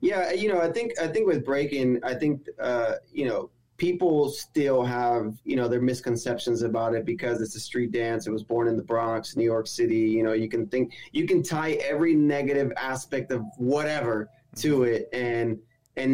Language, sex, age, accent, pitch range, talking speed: English, male, 20-39, American, 120-145 Hz, 200 wpm